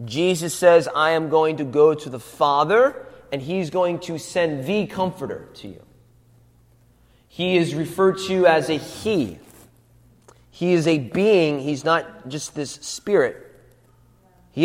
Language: English